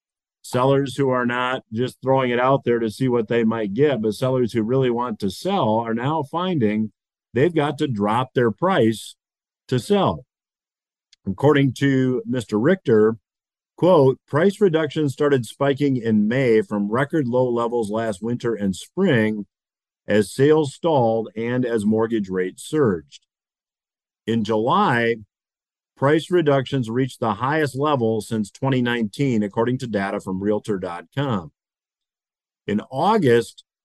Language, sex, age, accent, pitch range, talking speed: English, male, 50-69, American, 110-140 Hz, 135 wpm